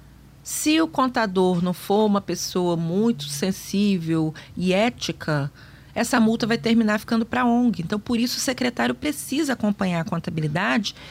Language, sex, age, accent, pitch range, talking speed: Portuguese, female, 30-49, Brazilian, 155-225 Hz, 150 wpm